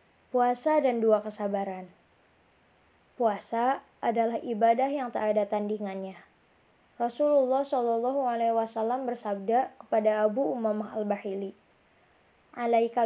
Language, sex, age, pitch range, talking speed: Indonesian, female, 10-29, 215-250 Hz, 95 wpm